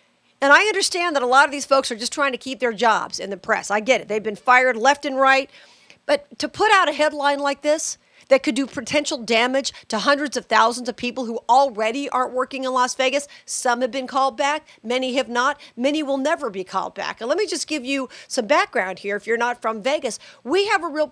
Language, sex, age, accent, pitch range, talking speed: English, female, 50-69, American, 235-285 Hz, 245 wpm